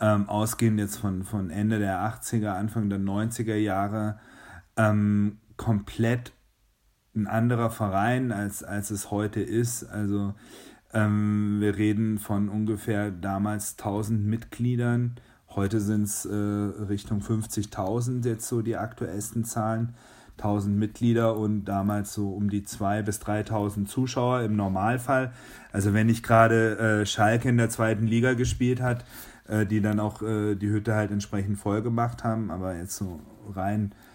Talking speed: 140 wpm